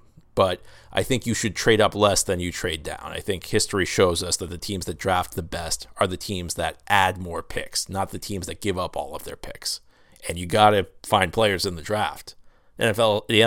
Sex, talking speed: male, 225 wpm